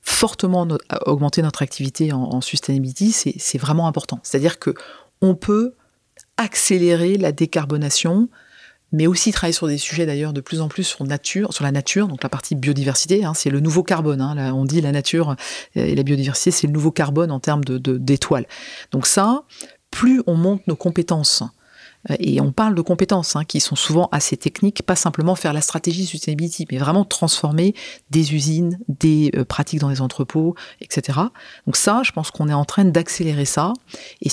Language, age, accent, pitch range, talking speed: French, 40-59, French, 140-180 Hz, 190 wpm